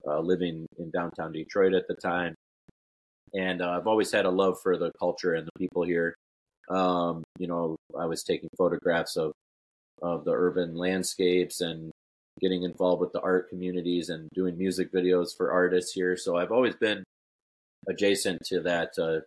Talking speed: 175 wpm